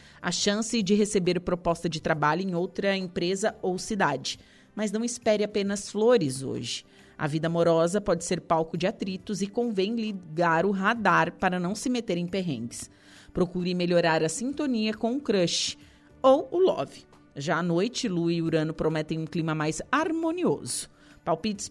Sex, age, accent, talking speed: female, 30-49, Brazilian, 165 wpm